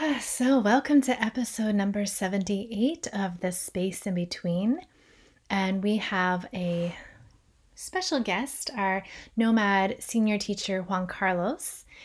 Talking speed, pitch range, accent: 115 wpm, 190-225 Hz, American